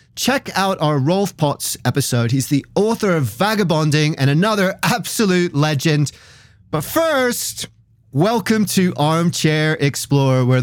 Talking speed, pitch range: 125 wpm, 140-200 Hz